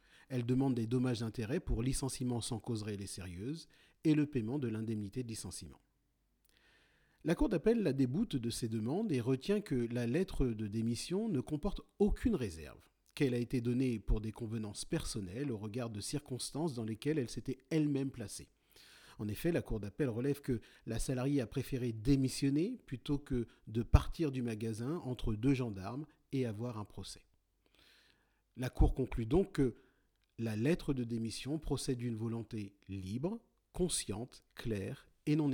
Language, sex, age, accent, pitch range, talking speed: French, male, 40-59, French, 115-150 Hz, 165 wpm